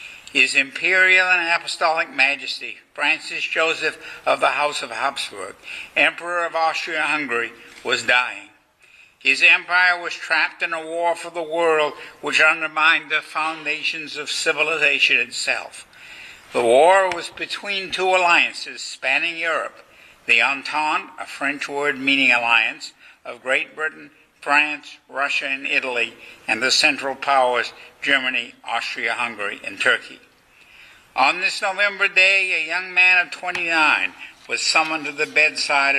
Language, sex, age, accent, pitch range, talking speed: English, male, 60-79, American, 140-170 Hz, 130 wpm